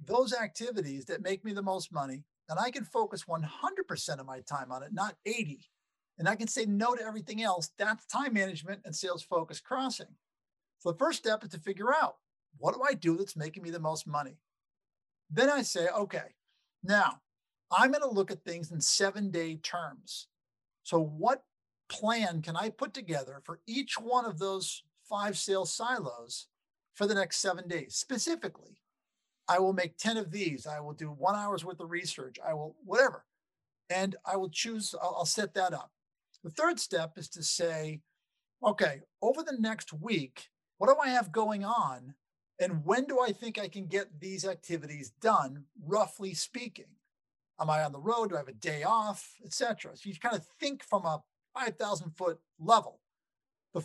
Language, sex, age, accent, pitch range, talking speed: English, male, 50-69, American, 165-225 Hz, 190 wpm